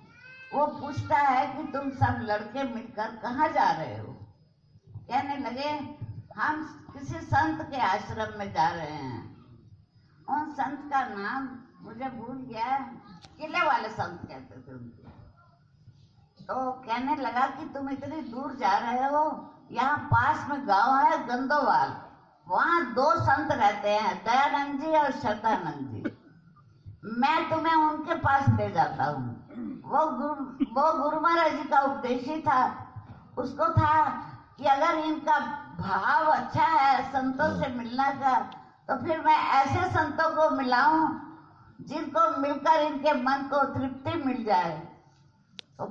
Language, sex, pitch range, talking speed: Hindi, female, 200-300 Hz, 140 wpm